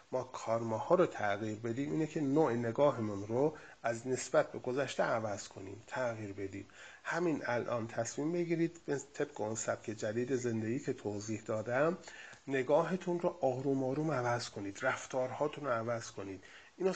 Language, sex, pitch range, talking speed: Persian, male, 115-160 Hz, 155 wpm